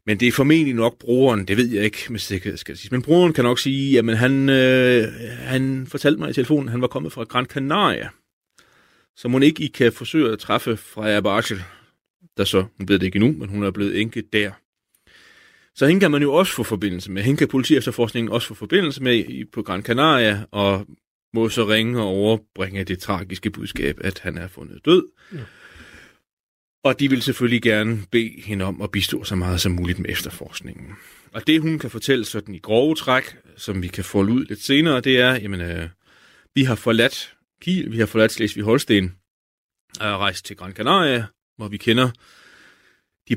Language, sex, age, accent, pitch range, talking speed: Danish, male, 30-49, native, 100-130 Hz, 195 wpm